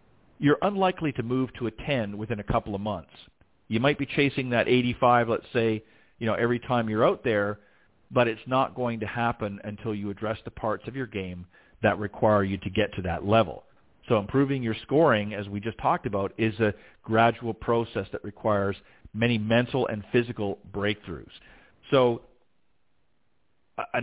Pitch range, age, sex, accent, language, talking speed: 105-130 Hz, 40-59, male, American, English, 175 wpm